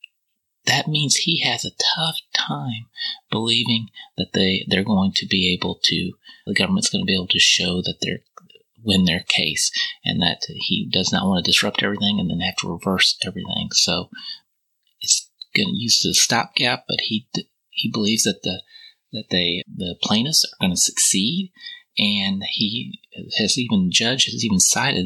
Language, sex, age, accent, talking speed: English, male, 30-49, American, 175 wpm